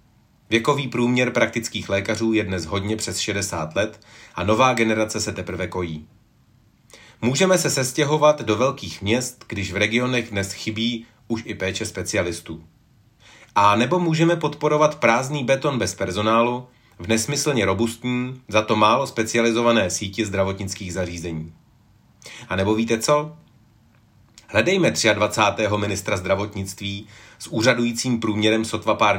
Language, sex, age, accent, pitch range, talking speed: Czech, male, 30-49, native, 100-120 Hz, 125 wpm